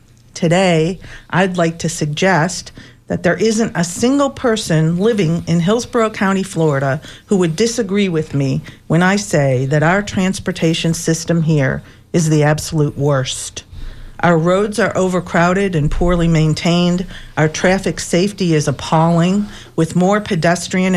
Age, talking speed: 50-69, 135 wpm